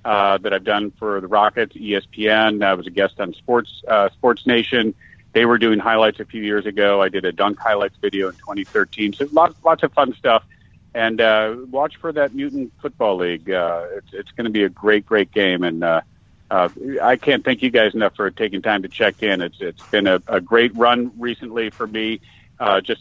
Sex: male